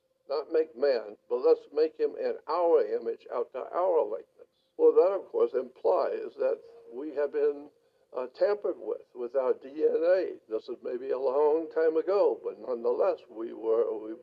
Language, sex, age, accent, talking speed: English, male, 60-79, American, 180 wpm